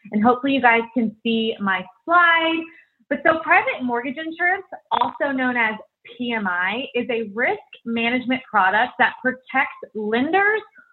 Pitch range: 225-290 Hz